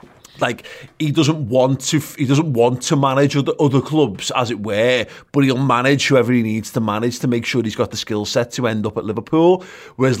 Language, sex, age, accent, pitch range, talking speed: English, male, 30-49, British, 110-135 Hz, 225 wpm